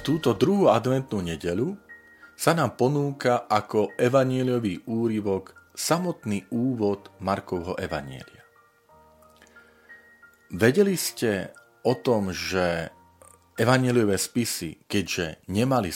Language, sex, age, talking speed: Slovak, male, 40-59, 90 wpm